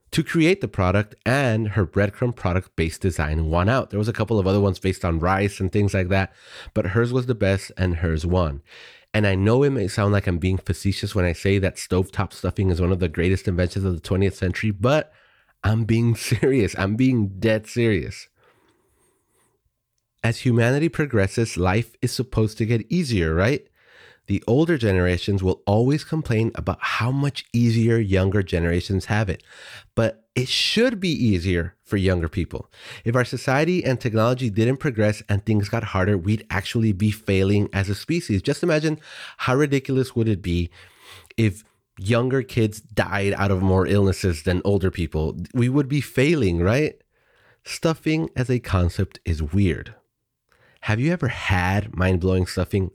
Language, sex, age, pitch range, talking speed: English, male, 30-49, 95-120 Hz, 175 wpm